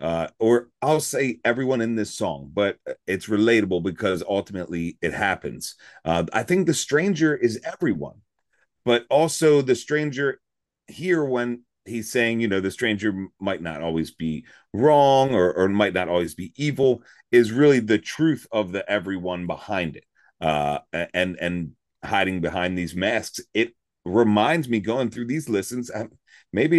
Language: English